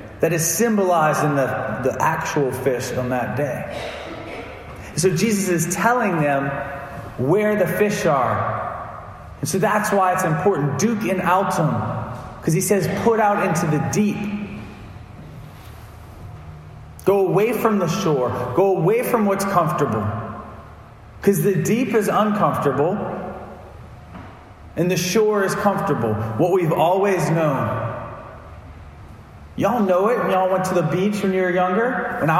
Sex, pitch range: male, 115-190 Hz